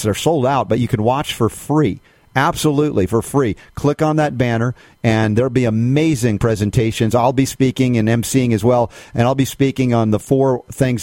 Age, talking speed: 40-59, 205 wpm